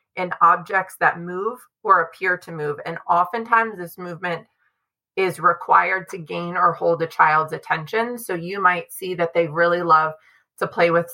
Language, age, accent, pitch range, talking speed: English, 30-49, American, 165-190 Hz, 170 wpm